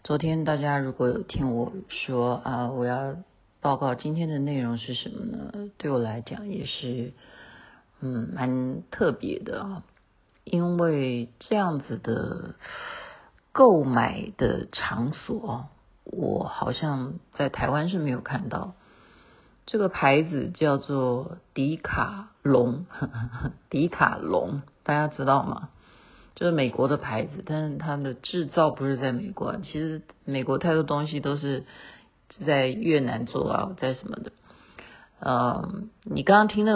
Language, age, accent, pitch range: Chinese, 50-69, native, 135-175 Hz